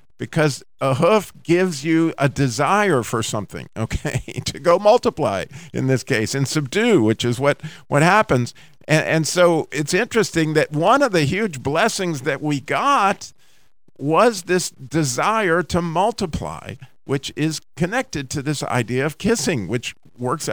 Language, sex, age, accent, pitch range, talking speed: English, male, 50-69, American, 125-160 Hz, 150 wpm